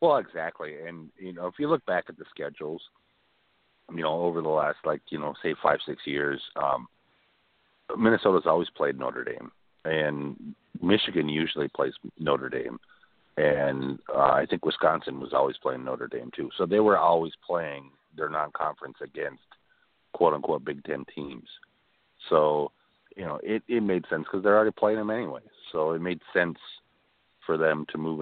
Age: 50-69